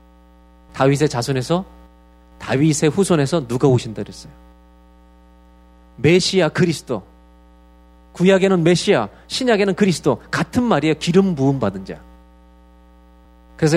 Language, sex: Korean, male